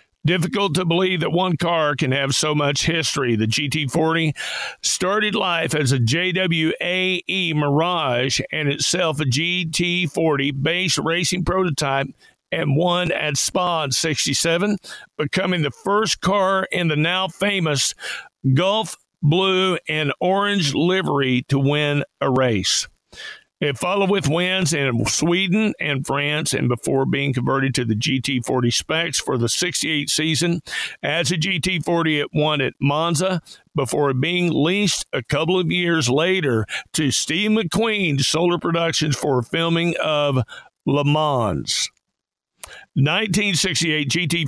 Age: 50-69